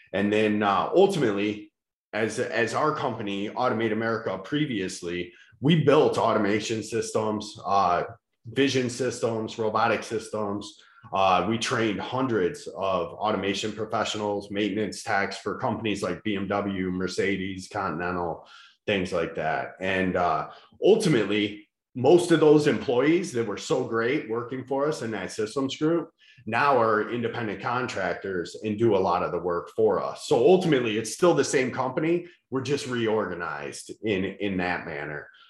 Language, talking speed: English, 140 wpm